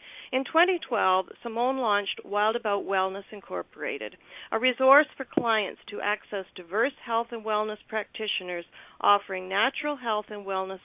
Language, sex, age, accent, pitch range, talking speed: English, female, 40-59, American, 205-265 Hz, 135 wpm